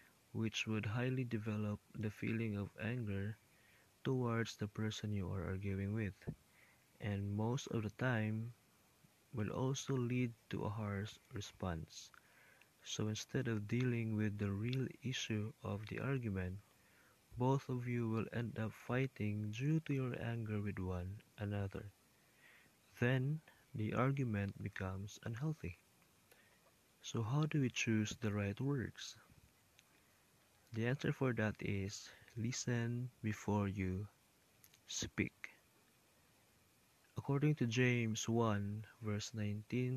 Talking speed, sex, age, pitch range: 120 wpm, male, 20-39, 105-125 Hz